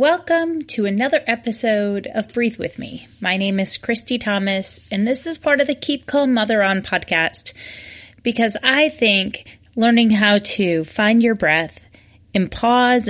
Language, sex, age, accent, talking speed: English, female, 30-49, American, 160 wpm